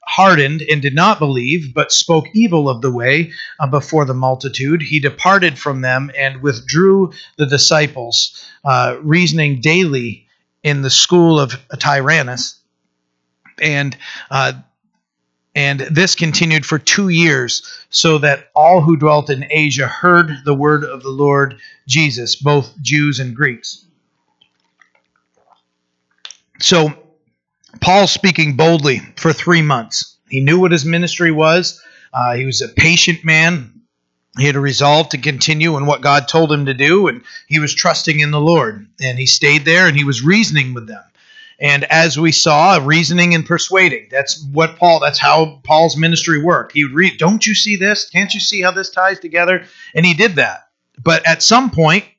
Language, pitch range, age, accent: English, 140-170 Hz, 40-59, American